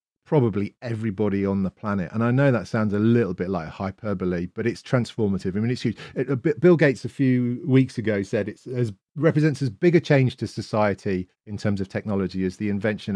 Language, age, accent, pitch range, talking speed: English, 40-59, British, 95-120 Hz, 210 wpm